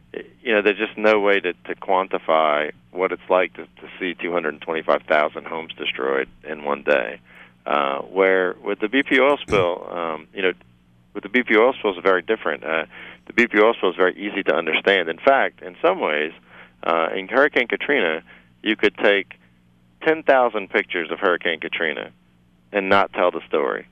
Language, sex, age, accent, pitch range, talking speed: English, male, 40-59, American, 70-100 Hz, 180 wpm